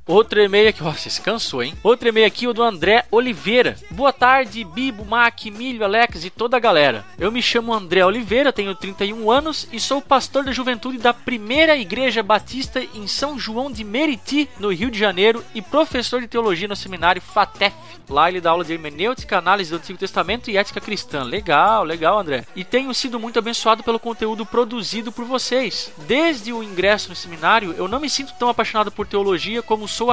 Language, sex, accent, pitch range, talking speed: Portuguese, male, Brazilian, 180-250 Hz, 195 wpm